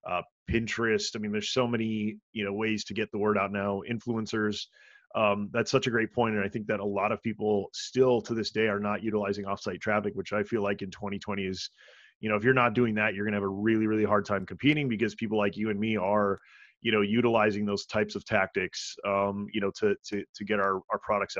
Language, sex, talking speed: English, male, 245 wpm